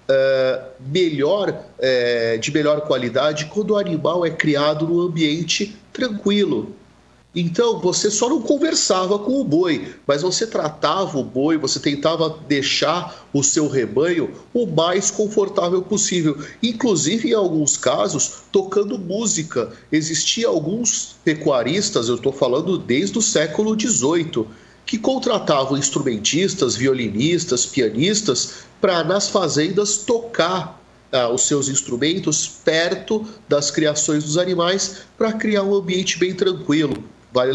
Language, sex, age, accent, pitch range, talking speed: Portuguese, male, 40-59, Brazilian, 140-205 Hz, 125 wpm